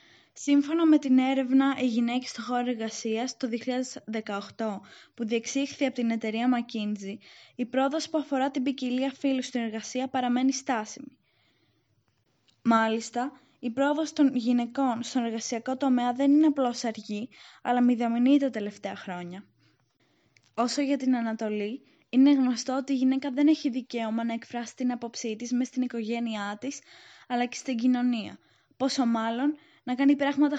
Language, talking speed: Greek, 145 wpm